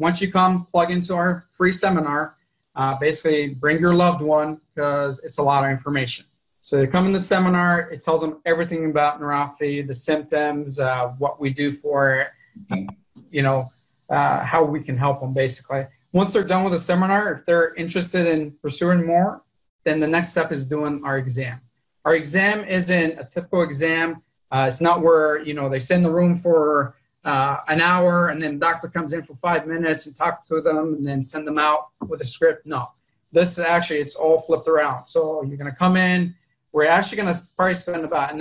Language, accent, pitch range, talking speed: English, American, 140-170 Hz, 205 wpm